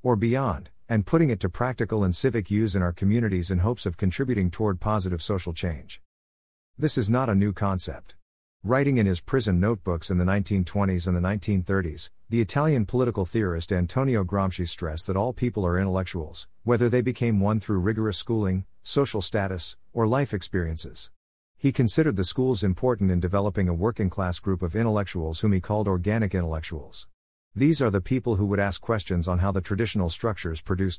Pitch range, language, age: 90-115 Hz, English, 50-69